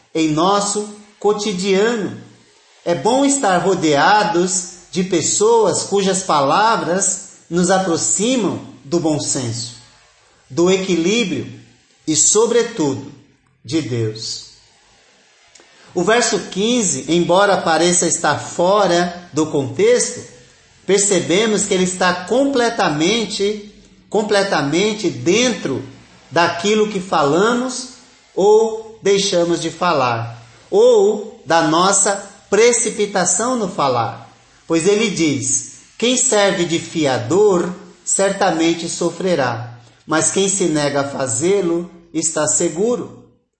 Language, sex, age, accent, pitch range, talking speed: Portuguese, male, 40-59, Brazilian, 165-215 Hz, 95 wpm